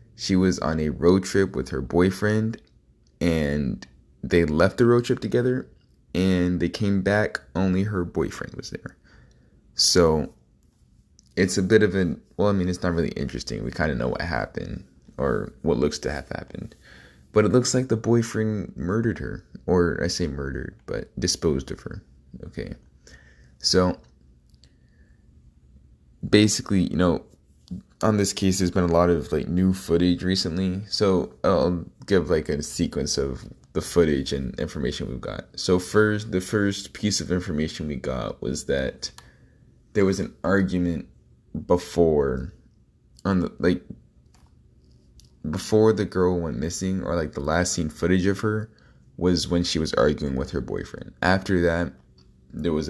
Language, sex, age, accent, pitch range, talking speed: English, male, 20-39, American, 70-100 Hz, 160 wpm